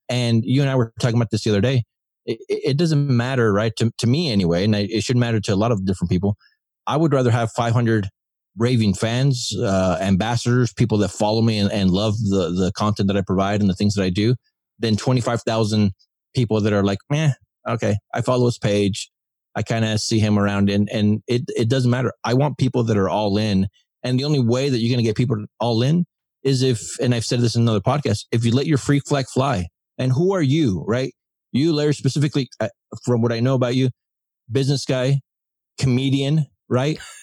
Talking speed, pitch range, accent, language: 220 wpm, 105-135 Hz, American, English